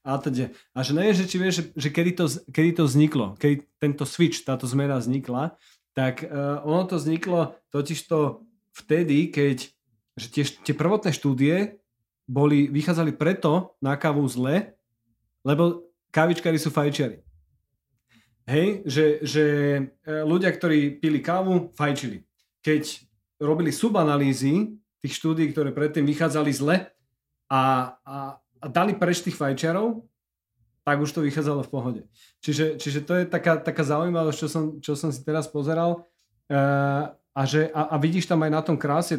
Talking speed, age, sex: 150 wpm, 30-49, male